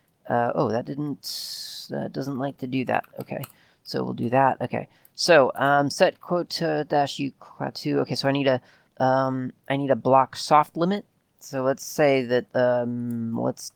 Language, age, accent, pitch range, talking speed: English, 30-49, American, 120-145 Hz, 175 wpm